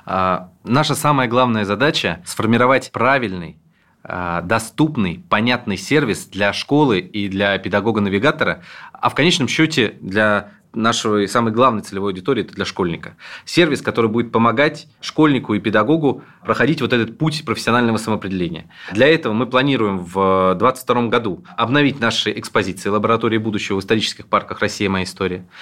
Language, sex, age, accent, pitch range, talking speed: Russian, male, 20-39, native, 105-130 Hz, 140 wpm